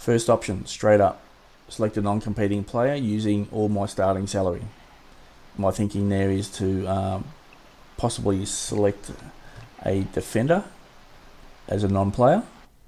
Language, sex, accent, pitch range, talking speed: English, male, Australian, 100-110 Hz, 120 wpm